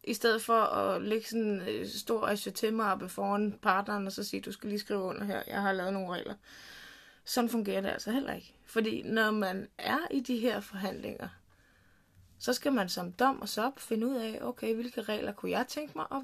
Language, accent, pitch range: Danish, native, 190-235 Hz